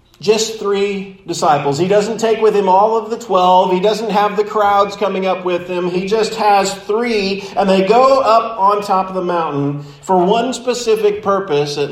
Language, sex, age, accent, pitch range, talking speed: English, male, 40-59, American, 140-205 Hz, 195 wpm